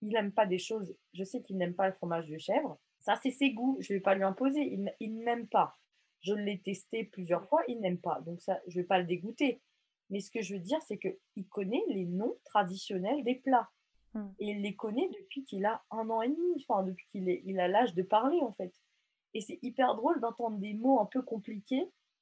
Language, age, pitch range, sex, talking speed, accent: French, 20-39, 185-230 Hz, female, 235 wpm, French